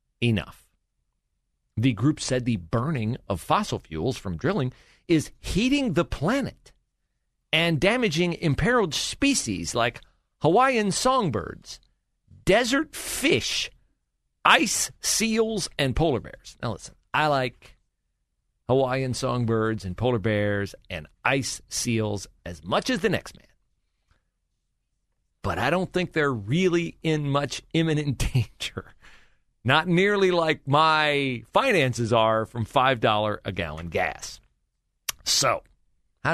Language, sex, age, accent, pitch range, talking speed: English, male, 40-59, American, 100-160 Hz, 115 wpm